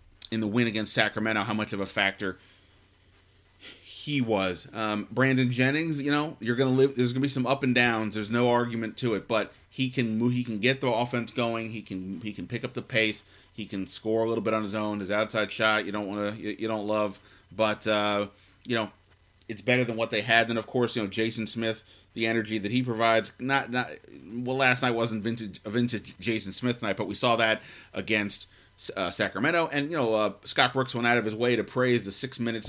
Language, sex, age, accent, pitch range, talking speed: English, male, 30-49, American, 105-125 Hz, 235 wpm